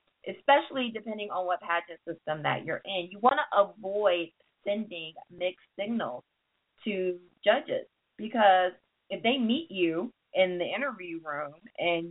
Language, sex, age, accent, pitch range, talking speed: English, female, 30-49, American, 170-210 Hz, 140 wpm